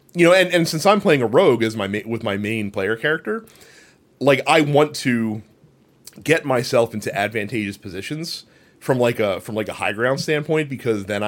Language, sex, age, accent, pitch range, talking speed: English, male, 30-49, American, 110-140 Hz, 195 wpm